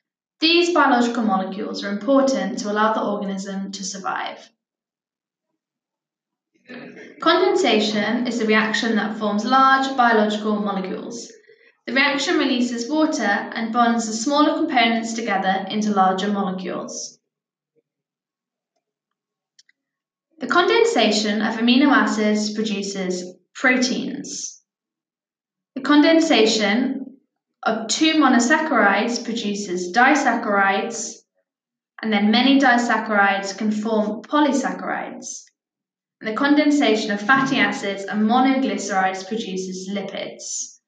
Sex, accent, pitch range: female, British, 205-270 Hz